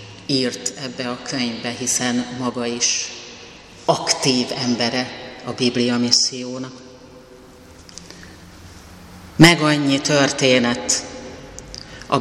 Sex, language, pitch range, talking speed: female, Hungarian, 130-145 Hz, 75 wpm